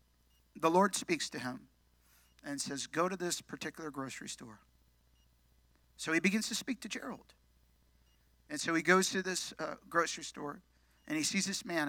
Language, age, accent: English, 50-69, American